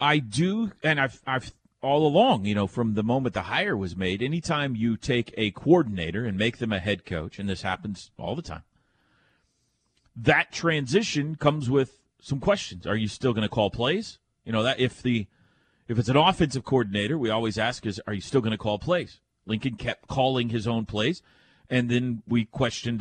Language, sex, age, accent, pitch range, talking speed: English, male, 40-59, American, 110-145 Hz, 200 wpm